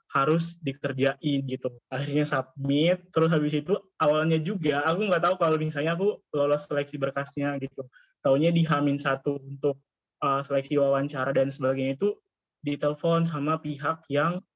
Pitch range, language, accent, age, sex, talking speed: 140-165 Hz, Indonesian, native, 20-39, male, 140 wpm